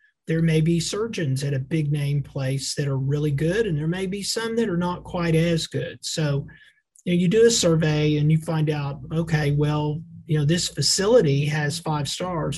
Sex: male